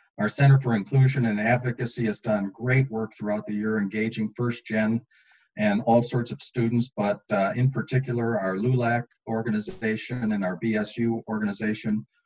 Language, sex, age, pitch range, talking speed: English, male, 40-59, 110-135 Hz, 155 wpm